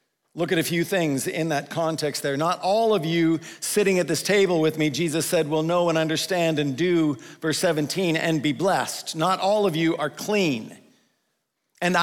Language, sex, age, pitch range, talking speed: English, male, 50-69, 165-205 Hz, 195 wpm